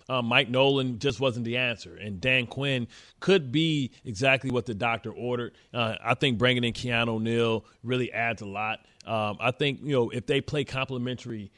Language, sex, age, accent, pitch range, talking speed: English, male, 30-49, American, 115-140 Hz, 190 wpm